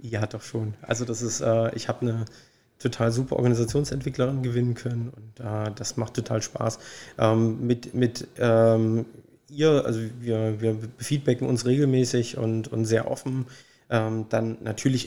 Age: 20-39